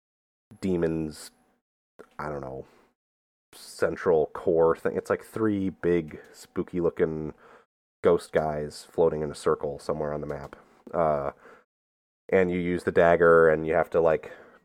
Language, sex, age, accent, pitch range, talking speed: English, male, 30-49, American, 75-110 Hz, 135 wpm